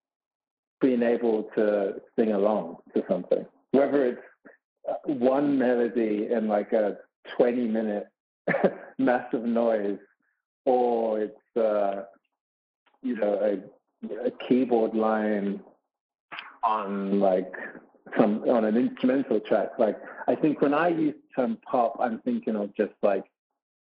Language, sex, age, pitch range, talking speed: English, male, 40-59, 105-130 Hz, 120 wpm